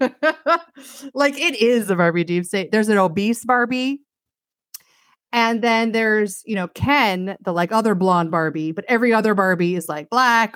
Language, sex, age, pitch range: English, female, 30-49, 180-240 Hz